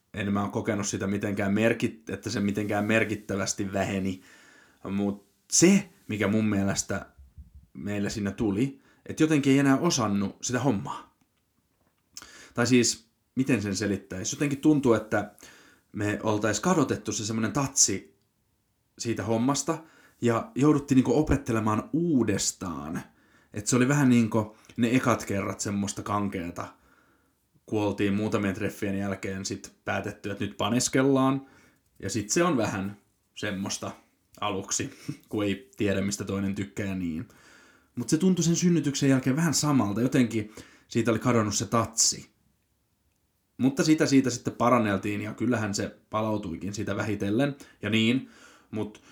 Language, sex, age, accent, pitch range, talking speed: Finnish, male, 30-49, native, 100-120 Hz, 135 wpm